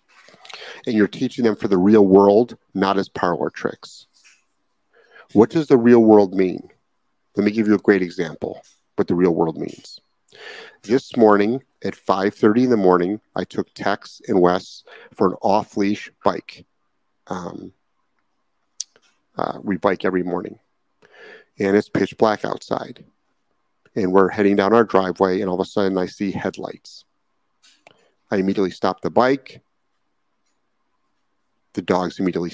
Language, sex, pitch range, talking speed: English, male, 90-105 Hz, 150 wpm